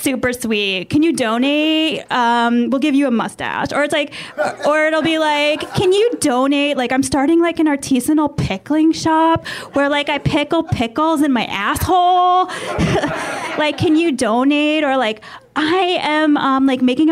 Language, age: English, 10-29